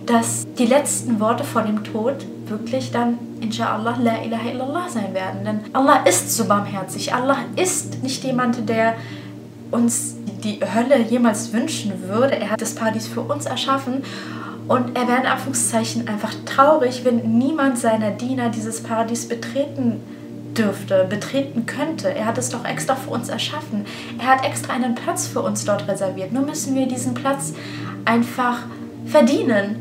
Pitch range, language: 205-260 Hz, German